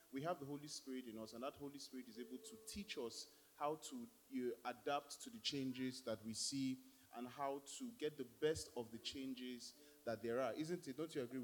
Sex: male